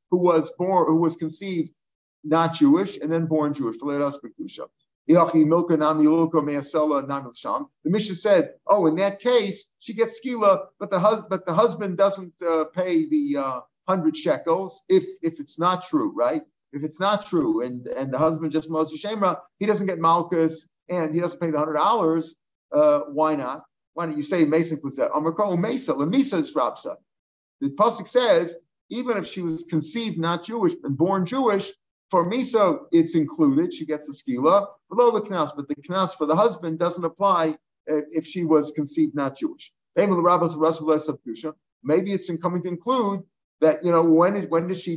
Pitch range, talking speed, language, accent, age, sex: 155-205 Hz, 165 wpm, English, American, 50-69, male